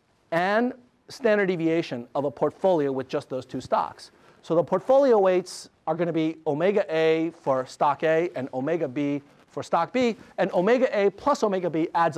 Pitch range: 135-185 Hz